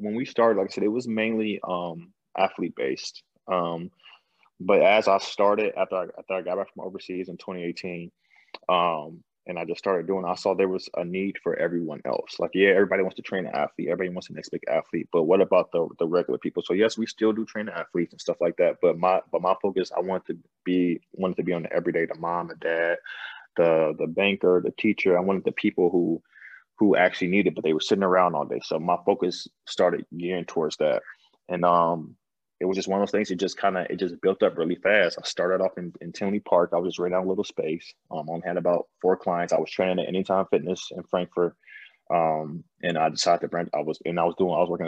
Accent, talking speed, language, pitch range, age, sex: American, 245 wpm, English, 85-95 Hz, 20-39, male